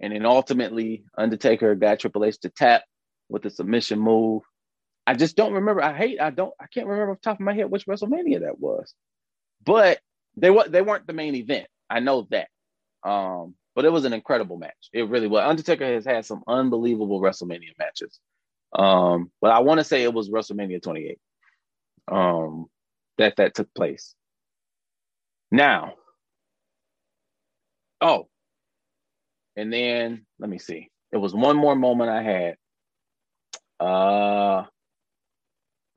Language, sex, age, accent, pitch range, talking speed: English, male, 30-49, American, 100-145 Hz, 155 wpm